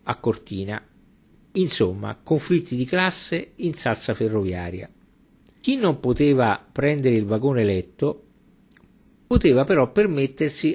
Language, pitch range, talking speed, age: Italian, 110-150 Hz, 105 wpm, 50-69